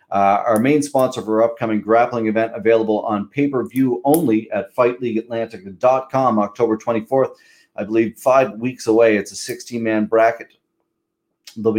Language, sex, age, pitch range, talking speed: English, male, 30-49, 110-135 Hz, 140 wpm